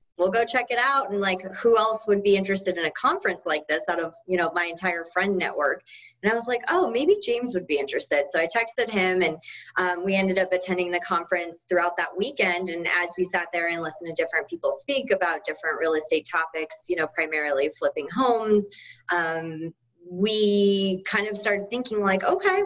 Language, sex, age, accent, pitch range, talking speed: English, female, 20-39, American, 165-200 Hz, 210 wpm